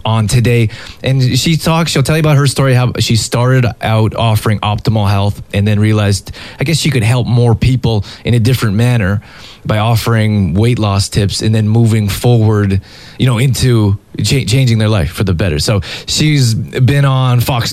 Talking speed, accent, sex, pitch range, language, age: 190 wpm, American, male, 110-130 Hz, English, 20-39